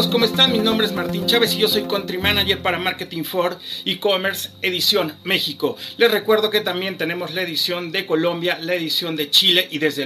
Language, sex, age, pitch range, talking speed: Spanish, male, 40-59, 170-215 Hz, 195 wpm